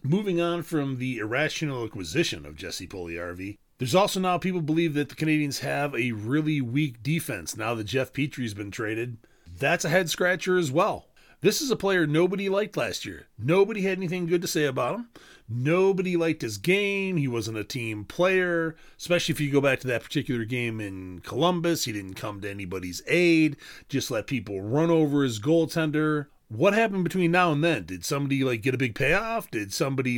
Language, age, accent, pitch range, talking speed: English, 30-49, American, 115-165 Hz, 195 wpm